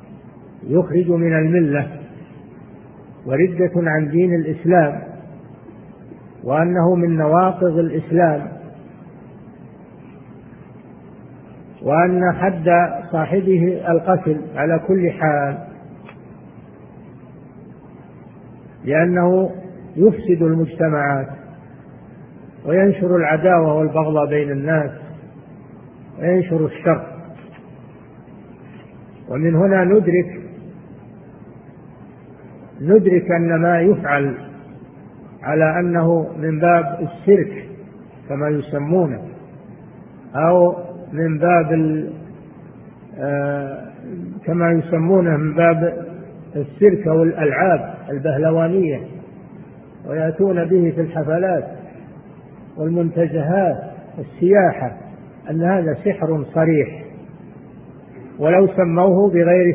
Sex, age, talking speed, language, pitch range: male, 50-69, 65 wpm, Arabic, 155-180 Hz